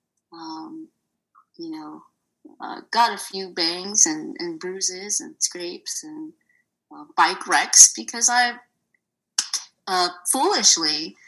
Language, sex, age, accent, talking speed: English, female, 30-49, American, 110 wpm